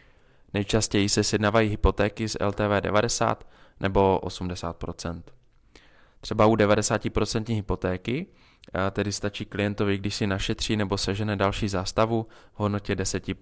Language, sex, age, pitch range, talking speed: Czech, male, 20-39, 95-110 Hz, 115 wpm